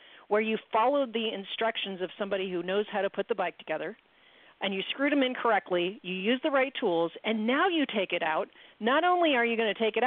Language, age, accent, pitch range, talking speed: English, 40-59, American, 185-240 Hz, 240 wpm